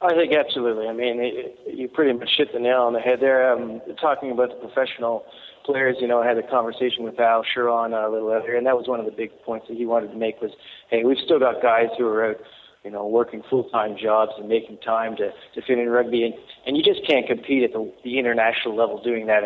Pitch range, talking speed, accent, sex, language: 115-130 Hz, 260 wpm, American, male, English